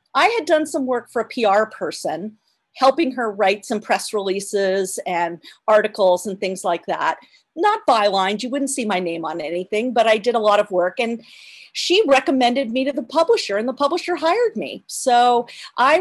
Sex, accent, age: female, American, 40-59